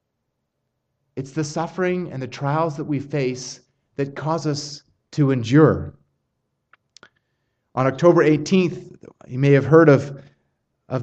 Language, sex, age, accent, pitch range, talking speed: English, male, 30-49, American, 120-155 Hz, 125 wpm